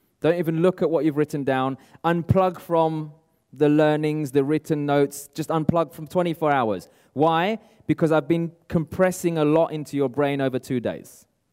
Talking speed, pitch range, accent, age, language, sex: 170 wpm, 135-175 Hz, British, 20-39, English, male